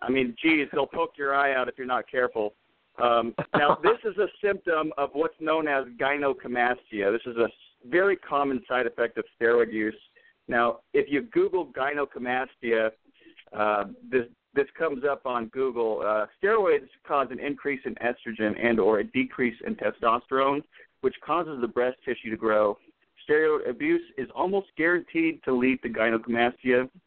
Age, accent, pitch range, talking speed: 50-69, American, 120-165 Hz, 165 wpm